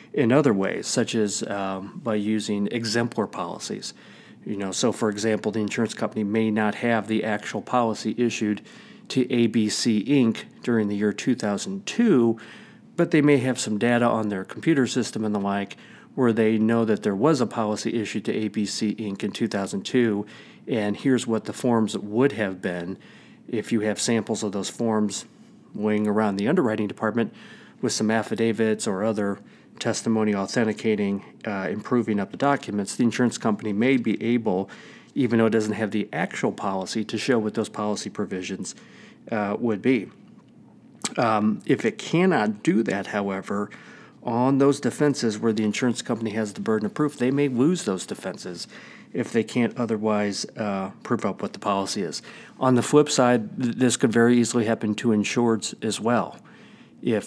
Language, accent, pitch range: English, American, 105-125 Hz